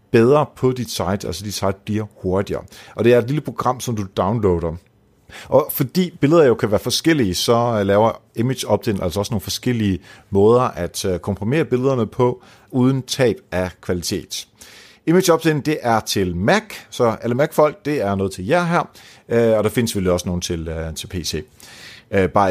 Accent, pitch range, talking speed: native, 100-145 Hz, 180 wpm